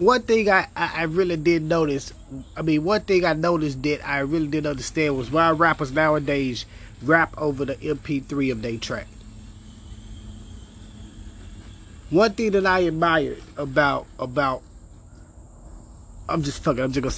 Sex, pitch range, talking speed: male, 105-160 Hz, 150 wpm